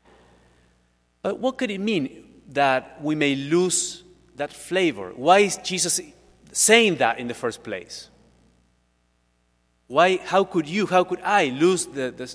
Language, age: English, 40-59